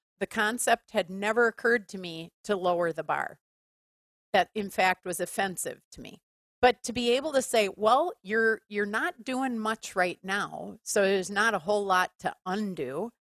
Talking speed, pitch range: 180 wpm, 175-220 Hz